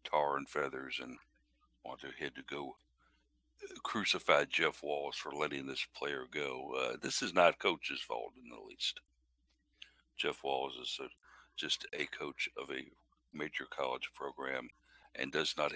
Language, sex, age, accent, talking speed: English, male, 60-79, American, 155 wpm